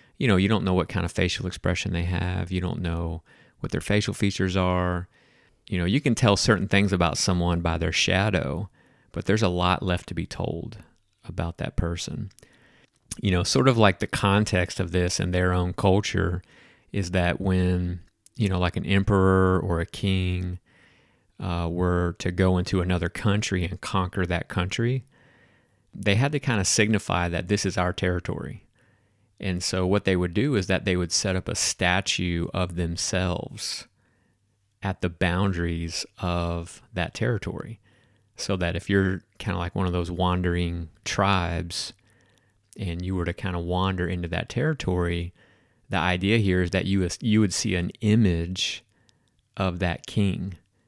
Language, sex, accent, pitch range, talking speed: English, male, American, 90-100 Hz, 170 wpm